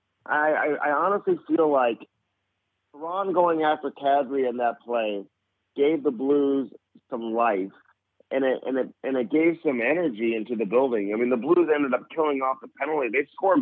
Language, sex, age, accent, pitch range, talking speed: English, male, 50-69, American, 120-150 Hz, 165 wpm